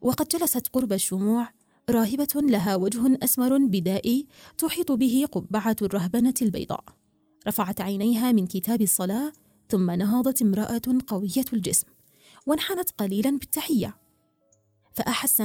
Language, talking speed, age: Arabic, 110 wpm, 20-39